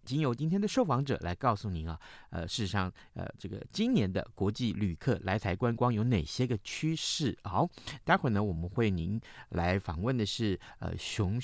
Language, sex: Chinese, male